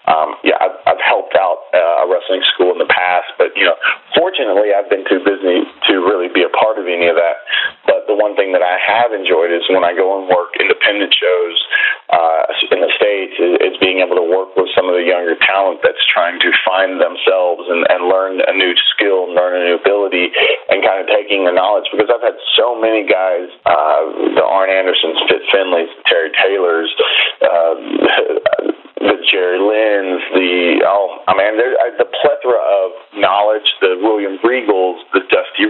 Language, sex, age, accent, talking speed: English, male, 30-49, American, 195 wpm